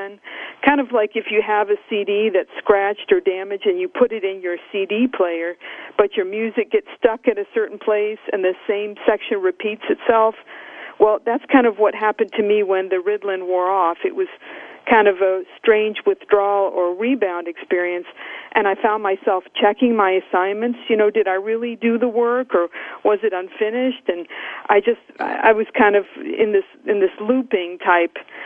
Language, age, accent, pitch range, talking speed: English, 50-69, American, 200-255 Hz, 190 wpm